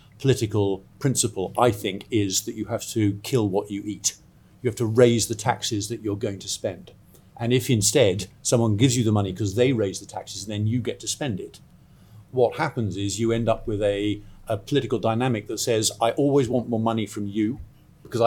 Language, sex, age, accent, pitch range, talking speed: English, male, 50-69, British, 100-125 Hz, 215 wpm